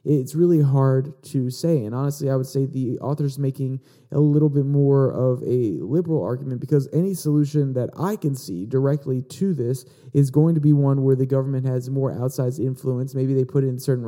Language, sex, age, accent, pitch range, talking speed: English, male, 30-49, American, 130-150 Hz, 205 wpm